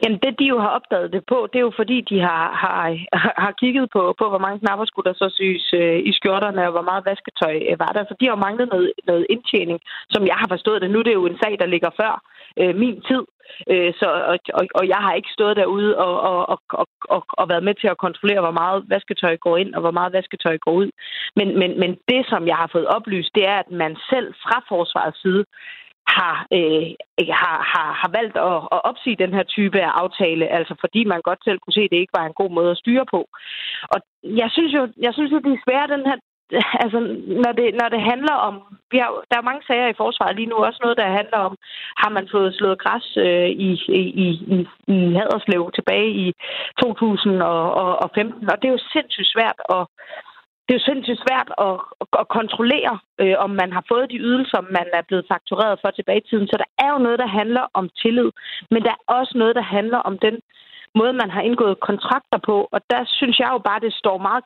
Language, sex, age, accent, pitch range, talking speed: Danish, female, 30-49, native, 185-240 Hz, 230 wpm